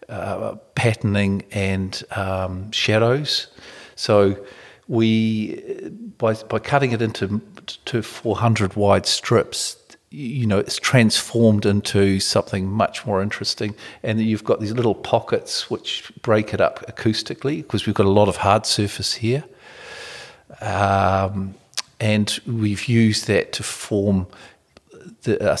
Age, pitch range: 50-69, 95-115 Hz